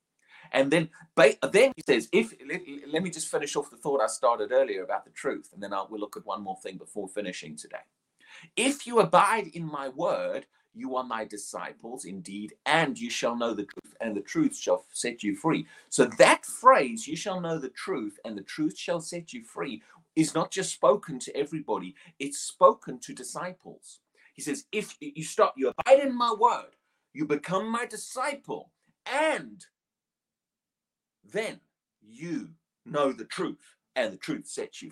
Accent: British